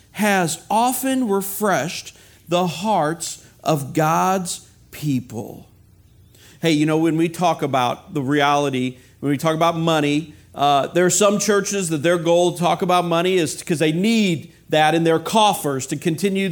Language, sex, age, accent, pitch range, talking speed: English, male, 50-69, American, 175-230 Hz, 160 wpm